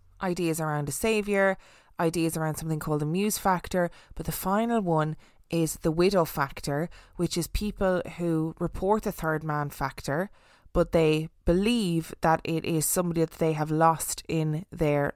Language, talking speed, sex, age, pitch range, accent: English, 160 wpm, female, 20-39, 155-185 Hz, Irish